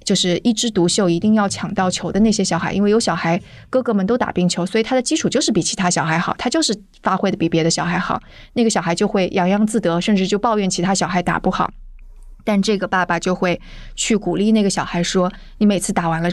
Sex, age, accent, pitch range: female, 20-39, native, 180-220 Hz